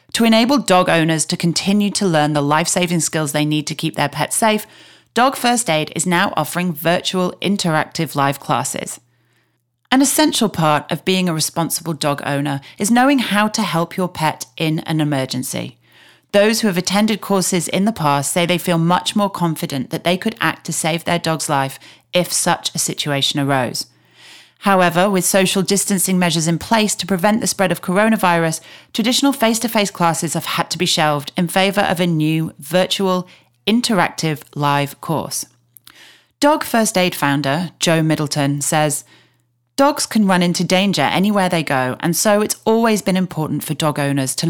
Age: 40-59